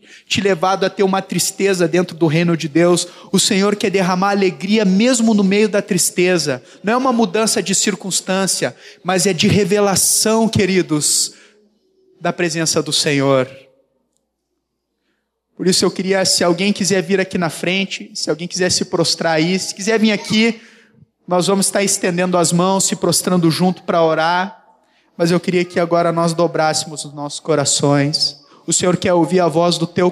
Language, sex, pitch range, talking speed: Portuguese, male, 165-195 Hz, 170 wpm